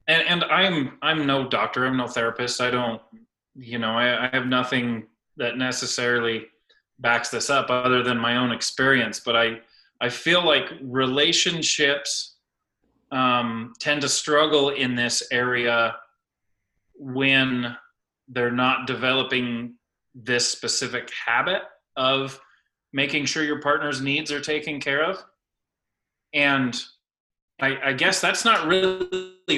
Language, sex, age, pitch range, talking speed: English, male, 30-49, 115-140 Hz, 130 wpm